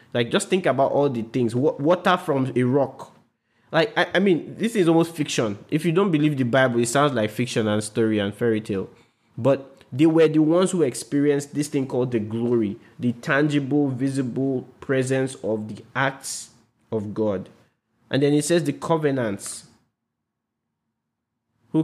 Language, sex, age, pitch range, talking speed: English, male, 20-39, 115-150 Hz, 170 wpm